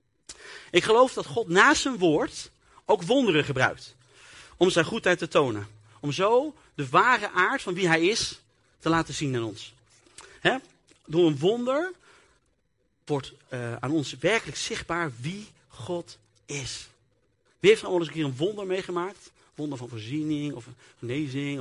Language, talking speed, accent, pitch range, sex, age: Dutch, 160 wpm, Dutch, 130-185 Hz, male, 40-59